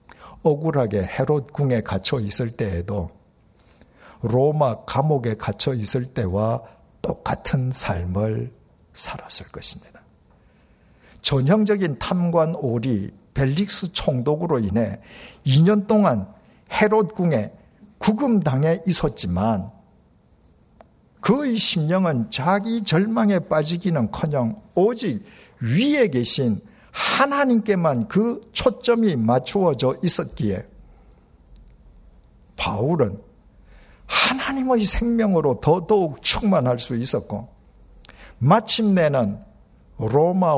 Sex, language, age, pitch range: male, Korean, 60-79, 120-185 Hz